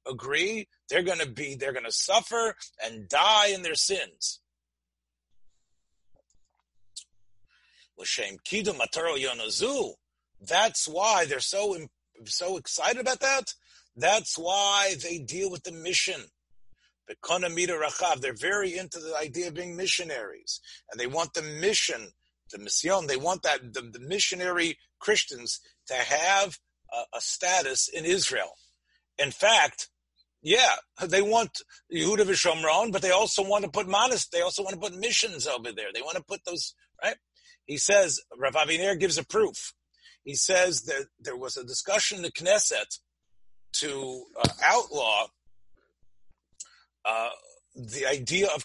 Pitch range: 130-200 Hz